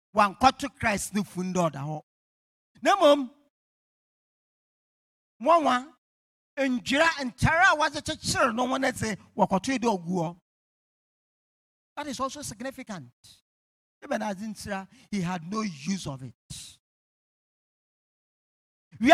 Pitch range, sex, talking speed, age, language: 185-290 Hz, male, 115 wpm, 50-69, English